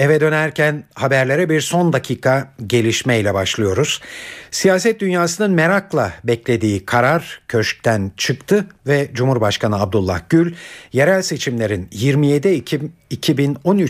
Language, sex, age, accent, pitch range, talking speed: Turkish, male, 60-79, native, 115-155 Hz, 100 wpm